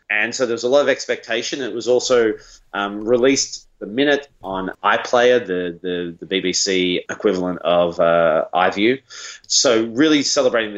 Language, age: English, 30-49